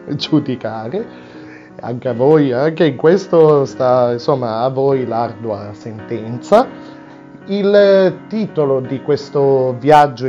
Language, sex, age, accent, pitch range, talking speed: Italian, male, 30-49, native, 120-200 Hz, 105 wpm